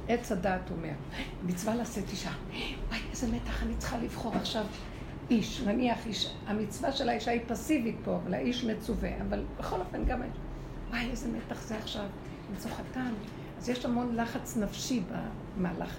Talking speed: 160 wpm